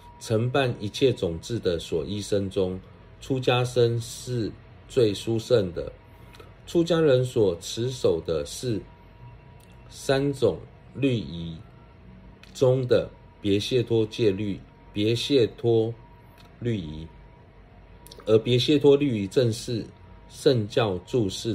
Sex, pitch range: male, 100-125 Hz